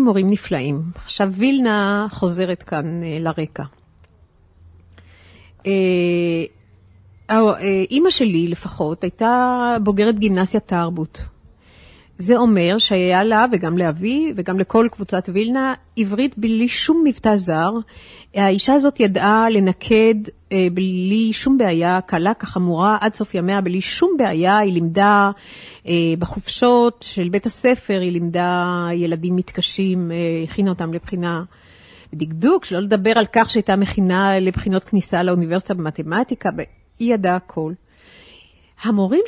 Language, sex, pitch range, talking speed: Hebrew, female, 170-210 Hz, 115 wpm